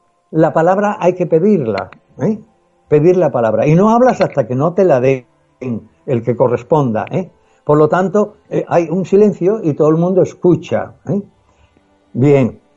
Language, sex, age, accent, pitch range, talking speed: Spanish, male, 60-79, Spanish, 125-165 Hz, 165 wpm